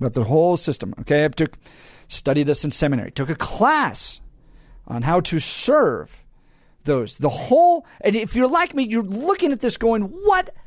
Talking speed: 180 wpm